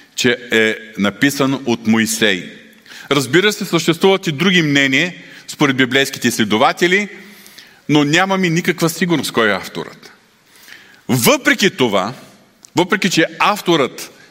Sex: male